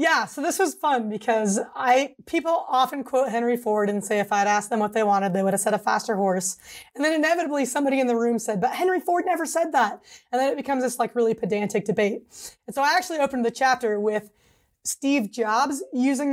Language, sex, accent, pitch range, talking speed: English, female, American, 205-275 Hz, 230 wpm